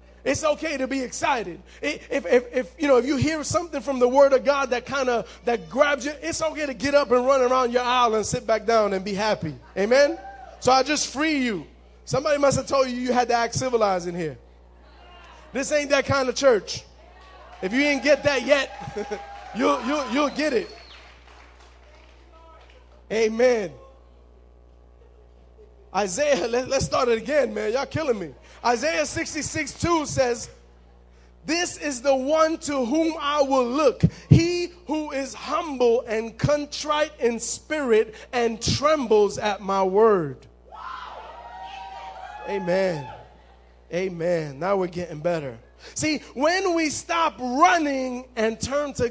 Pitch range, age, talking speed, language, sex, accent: 175-285 Hz, 20-39, 155 wpm, English, male, American